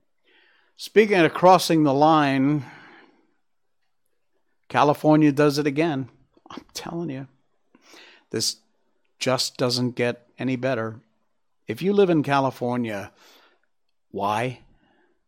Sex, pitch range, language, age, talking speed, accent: male, 125-180 Hz, English, 60-79, 95 wpm, American